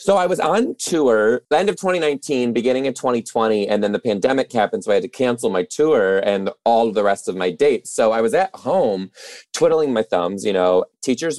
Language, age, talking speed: English, 30-49, 220 wpm